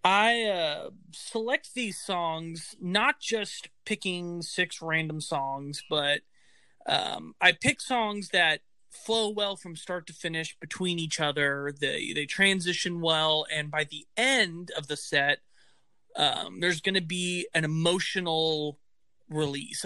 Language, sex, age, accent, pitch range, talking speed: English, male, 30-49, American, 155-190 Hz, 135 wpm